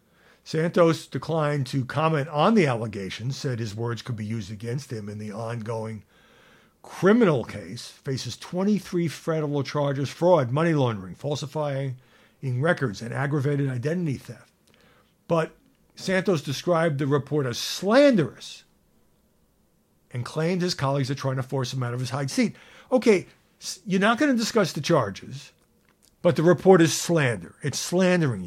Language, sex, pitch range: English, male, 125-175 Hz